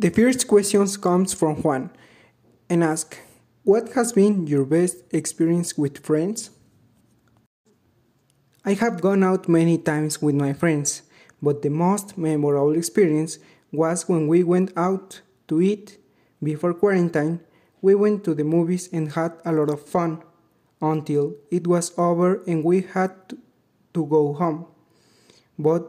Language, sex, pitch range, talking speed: English, male, 150-185 Hz, 140 wpm